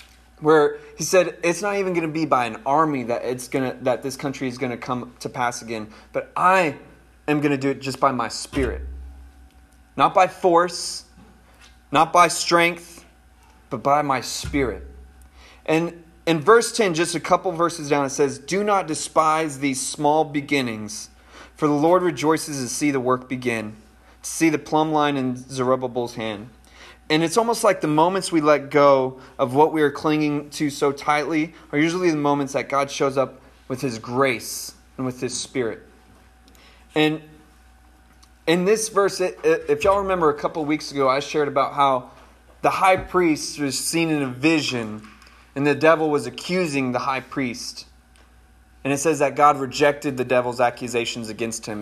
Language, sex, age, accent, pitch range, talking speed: English, male, 30-49, American, 120-160 Hz, 180 wpm